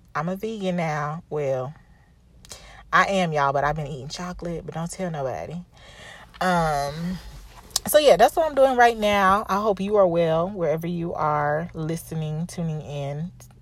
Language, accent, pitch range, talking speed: English, American, 155-195 Hz, 165 wpm